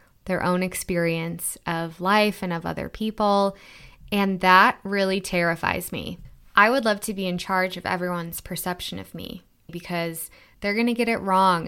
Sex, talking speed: female, 170 wpm